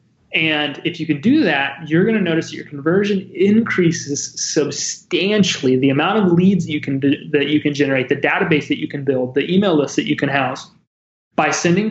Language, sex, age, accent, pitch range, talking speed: English, male, 30-49, American, 150-175 Hz, 210 wpm